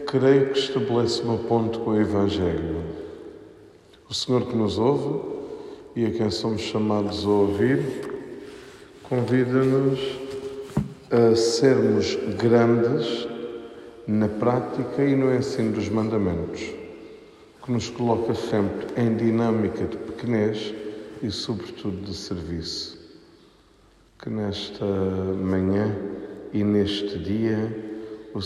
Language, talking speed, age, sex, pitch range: Portuguese, 105 wpm, 50-69, male, 100-115 Hz